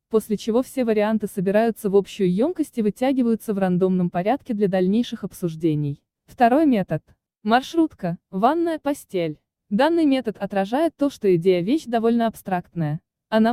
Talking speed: 135 wpm